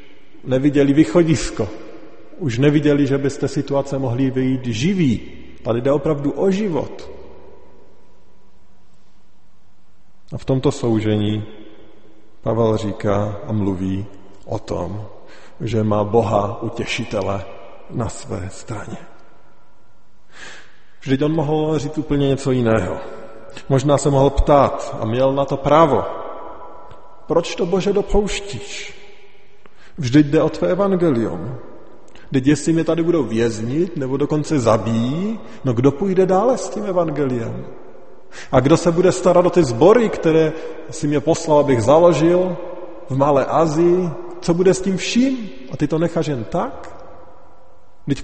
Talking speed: 125 wpm